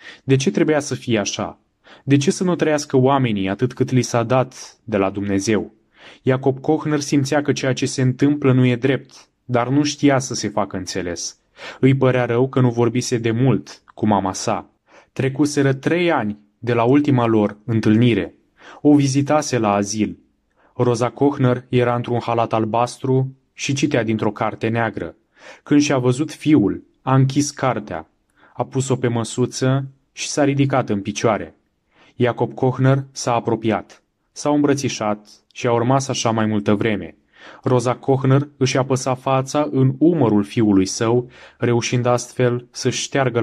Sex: male